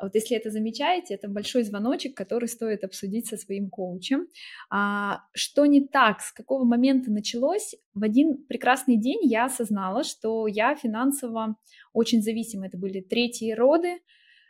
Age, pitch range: 20-39, 205-260 Hz